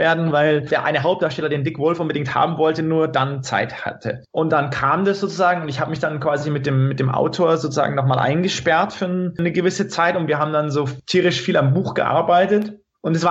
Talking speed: 230 wpm